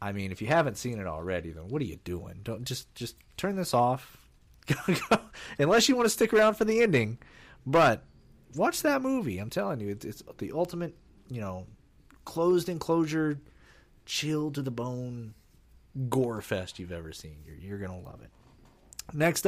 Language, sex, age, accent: English, male, 30-49, American